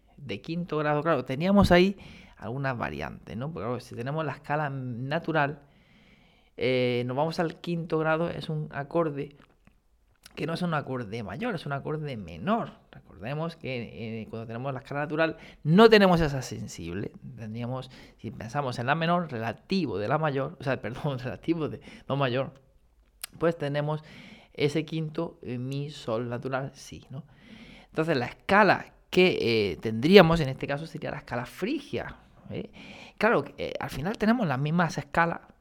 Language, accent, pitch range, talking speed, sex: Spanish, Spanish, 125-165 Hz, 155 wpm, male